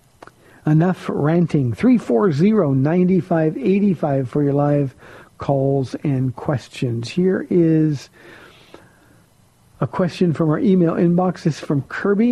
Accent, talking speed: American, 95 wpm